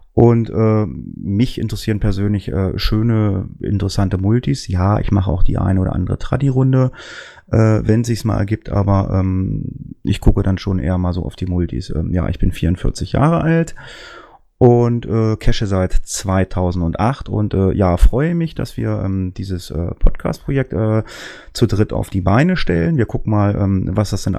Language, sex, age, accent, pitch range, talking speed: German, male, 30-49, German, 95-110 Hz, 175 wpm